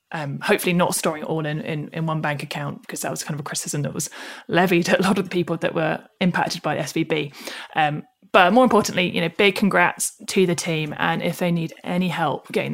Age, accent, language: 20-39, British, English